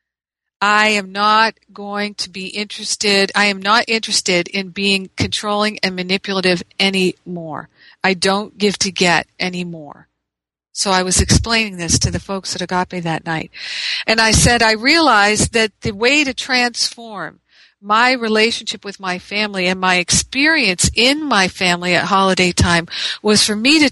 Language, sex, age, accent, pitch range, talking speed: English, female, 50-69, American, 185-225 Hz, 160 wpm